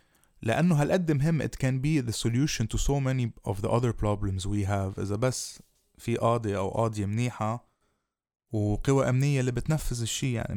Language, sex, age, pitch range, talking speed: Arabic, male, 20-39, 105-130 Hz, 170 wpm